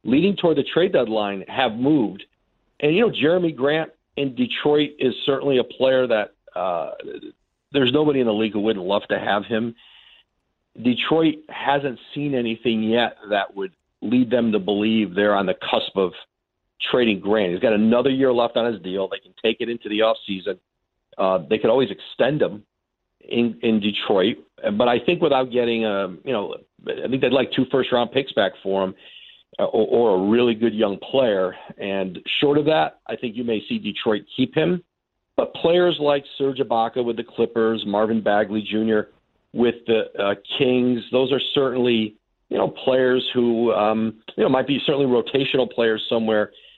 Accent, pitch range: American, 105-130 Hz